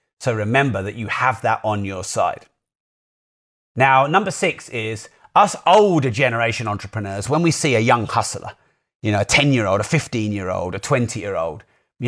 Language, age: English, 30-49